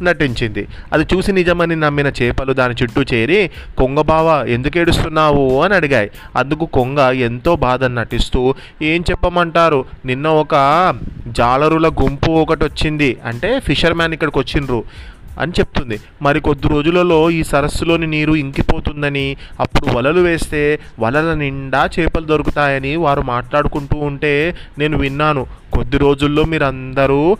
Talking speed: 120 wpm